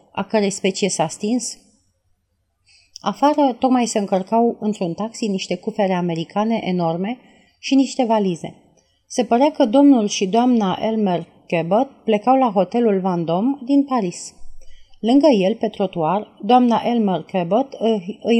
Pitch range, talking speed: 180-235 Hz, 135 wpm